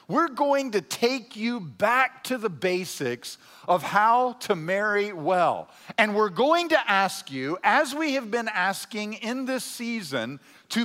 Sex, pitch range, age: male, 195-265 Hz, 50-69